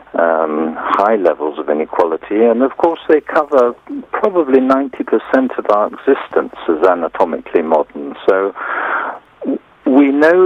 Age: 50-69